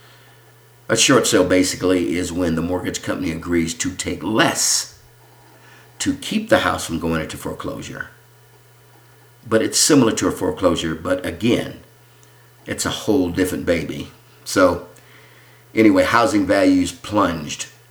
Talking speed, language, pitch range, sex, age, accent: 130 wpm, English, 90-130 Hz, male, 50-69, American